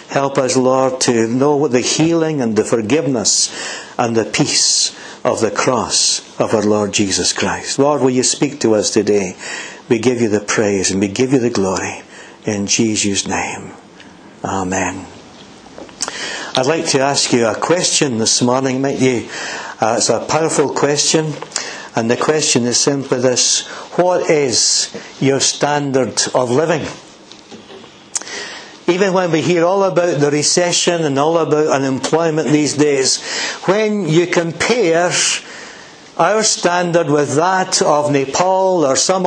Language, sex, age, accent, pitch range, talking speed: English, male, 60-79, British, 130-170 Hz, 145 wpm